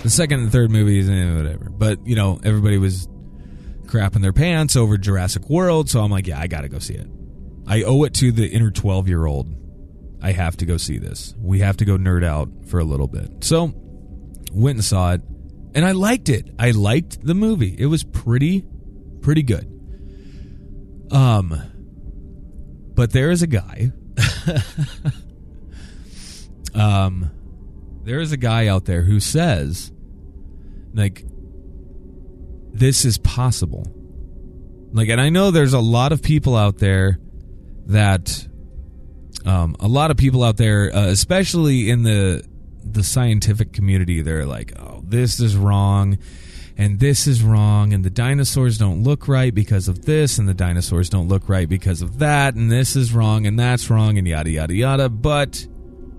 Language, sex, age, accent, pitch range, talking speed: English, male, 30-49, American, 85-120 Hz, 165 wpm